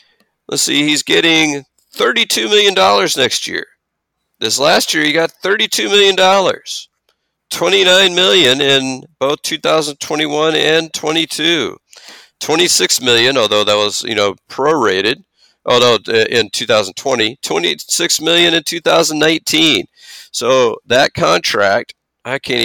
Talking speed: 115 wpm